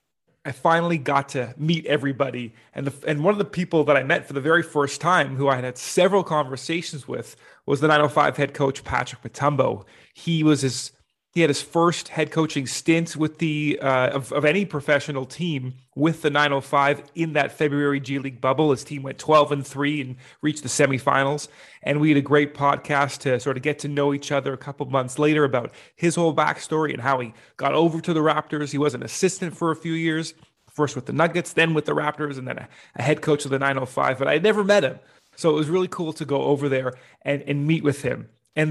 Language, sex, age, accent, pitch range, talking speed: English, male, 30-49, American, 135-155 Hz, 230 wpm